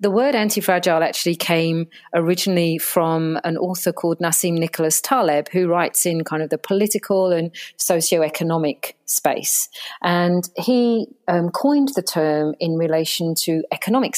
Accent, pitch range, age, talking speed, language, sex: British, 160-200 Hz, 40-59, 140 wpm, English, female